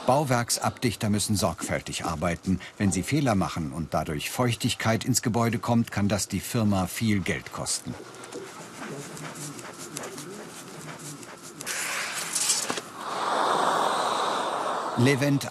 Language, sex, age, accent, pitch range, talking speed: German, male, 60-79, German, 95-130 Hz, 85 wpm